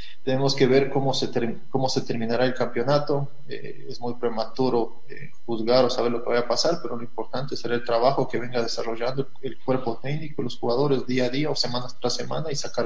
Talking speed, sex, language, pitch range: 215 wpm, male, Spanish, 115-140 Hz